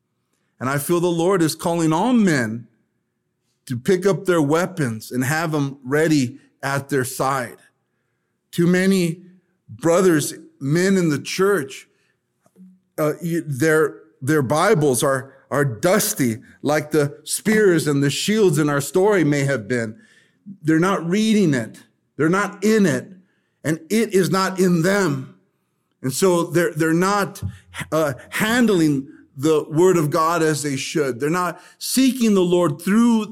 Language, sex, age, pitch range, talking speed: English, male, 50-69, 150-195 Hz, 145 wpm